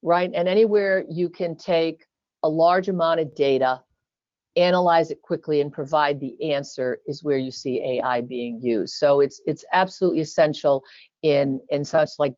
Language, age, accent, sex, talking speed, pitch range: English, 50-69, American, female, 165 wpm, 145-175 Hz